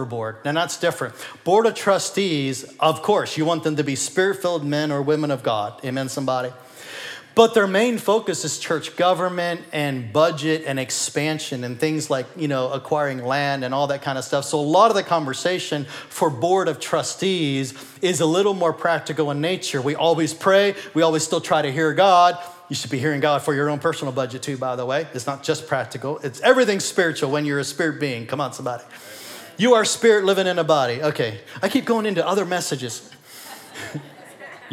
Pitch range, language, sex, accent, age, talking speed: 140-180 Hz, English, male, American, 40-59, 200 wpm